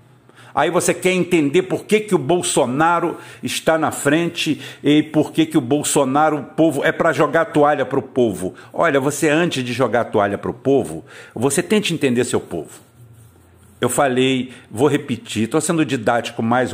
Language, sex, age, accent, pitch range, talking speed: Portuguese, male, 60-79, Brazilian, 125-155 Hz, 185 wpm